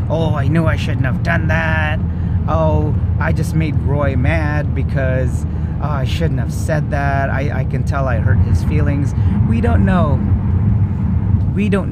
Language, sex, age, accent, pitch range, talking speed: English, male, 30-49, American, 95-110 Hz, 165 wpm